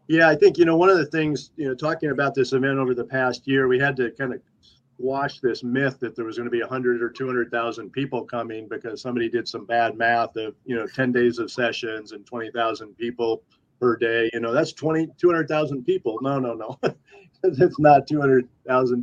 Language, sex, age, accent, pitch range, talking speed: English, male, 50-69, American, 120-145 Hz, 215 wpm